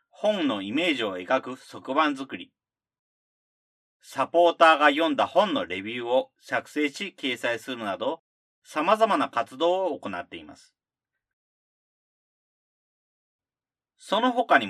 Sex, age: male, 40-59